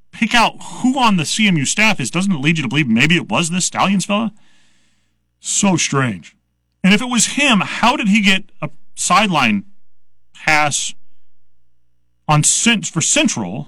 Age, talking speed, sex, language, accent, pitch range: 30-49, 160 wpm, male, English, American, 115-195 Hz